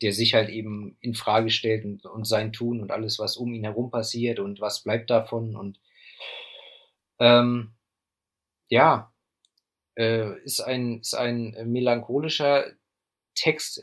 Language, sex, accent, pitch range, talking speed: German, male, German, 110-140 Hz, 140 wpm